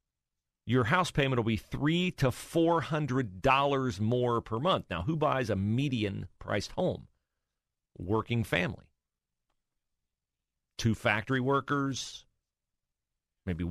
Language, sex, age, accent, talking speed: English, male, 40-59, American, 115 wpm